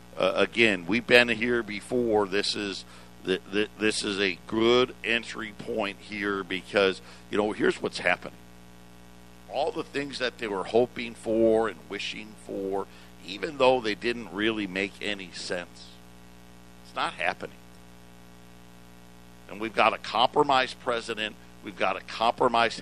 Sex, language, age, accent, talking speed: male, English, 60-79, American, 145 wpm